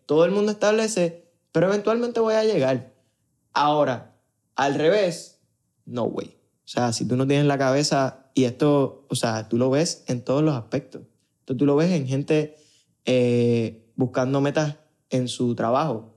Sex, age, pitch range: male, 20-39, 125-165 Hz